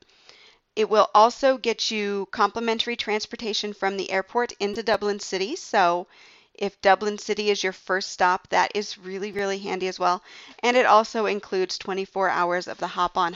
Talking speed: 165 wpm